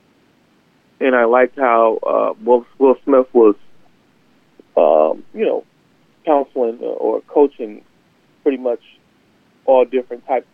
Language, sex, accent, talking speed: English, male, American, 110 wpm